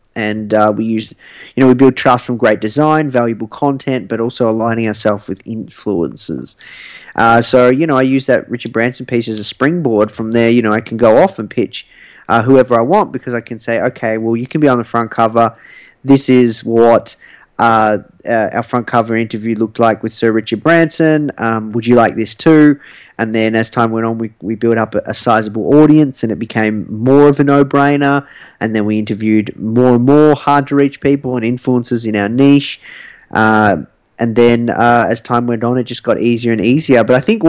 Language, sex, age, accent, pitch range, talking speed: English, male, 20-39, Australian, 110-135 Hz, 215 wpm